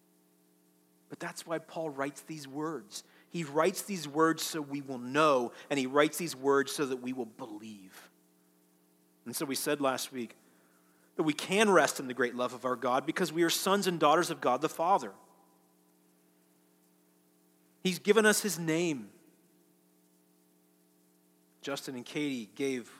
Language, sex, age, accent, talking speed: English, male, 40-59, American, 160 wpm